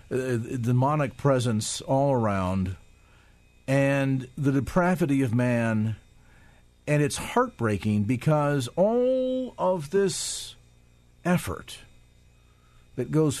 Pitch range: 95-145 Hz